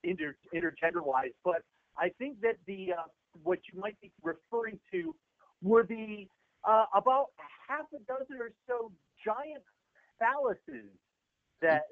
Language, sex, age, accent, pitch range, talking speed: English, male, 50-69, American, 145-205 Hz, 135 wpm